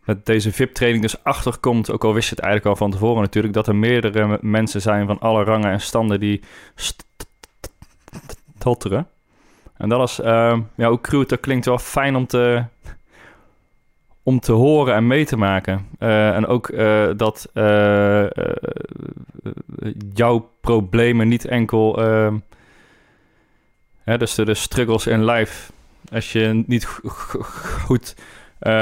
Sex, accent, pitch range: male, Dutch, 105-120 Hz